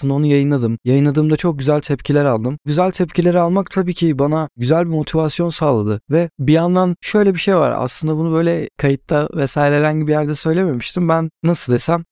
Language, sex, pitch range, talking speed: Turkish, male, 135-170 Hz, 180 wpm